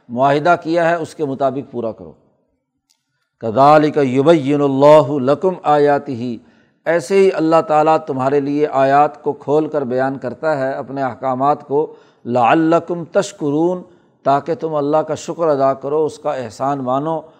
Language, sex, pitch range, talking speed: Urdu, male, 135-155 Hz, 150 wpm